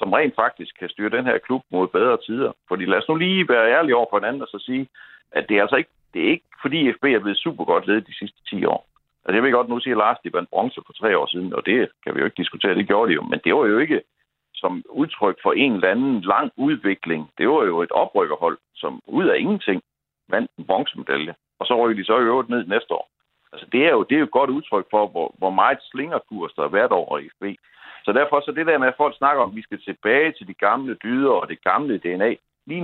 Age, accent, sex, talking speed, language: 60-79, native, male, 265 wpm, Danish